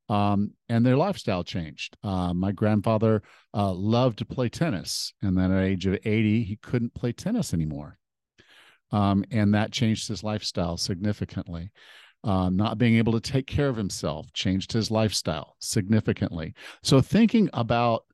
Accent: American